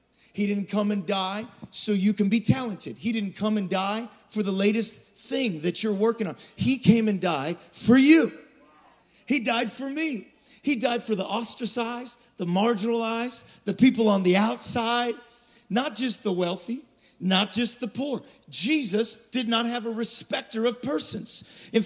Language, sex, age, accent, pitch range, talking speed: English, male, 40-59, American, 180-230 Hz, 170 wpm